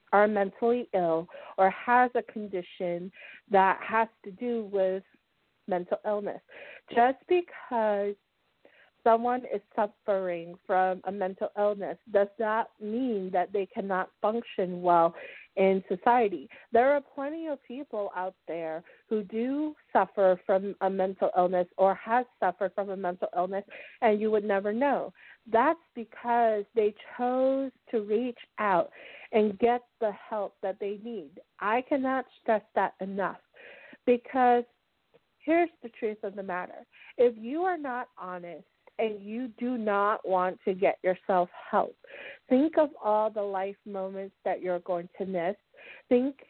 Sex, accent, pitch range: female, American, 195-240 Hz